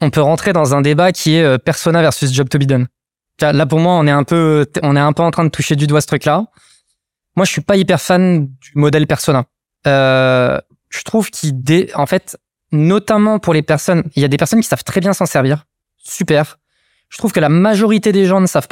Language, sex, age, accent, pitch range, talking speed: French, male, 20-39, French, 140-180 Hz, 235 wpm